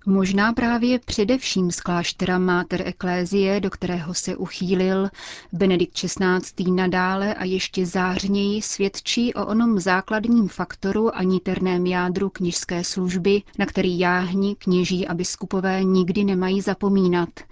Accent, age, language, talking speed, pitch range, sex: native, 30-49, Czech, 125 wpm, 180-200 Hz, female